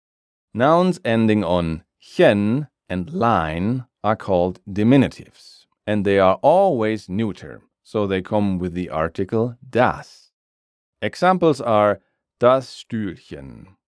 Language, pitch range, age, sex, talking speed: German, 90-120 Hz, 40-59, male, 110 wpm